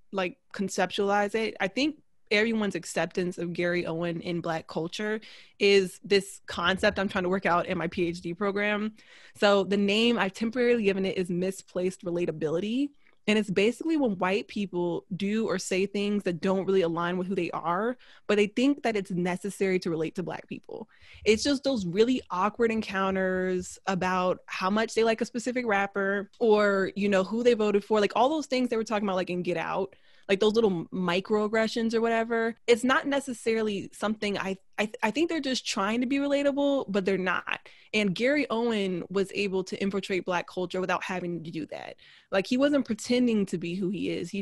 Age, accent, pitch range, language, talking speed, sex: 20-39, American, 185-225 Hz, English, 195 wpm, female